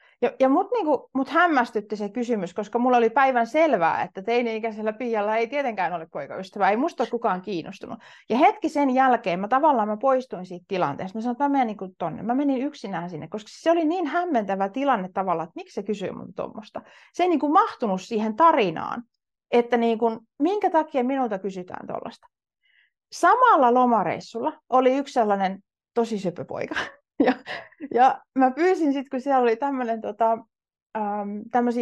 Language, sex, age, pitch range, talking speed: Finnish, female, 30-49, 210-280 Hz, 165 wpm